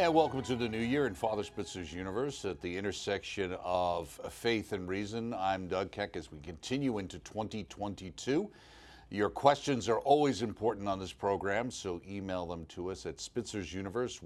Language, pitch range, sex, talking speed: English, 95-115 Hz, male, 170 wpm